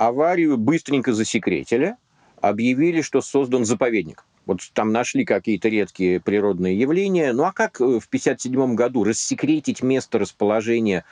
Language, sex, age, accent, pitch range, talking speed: Russian, male, 50-69, native, 105-165 Hz, 125 wpm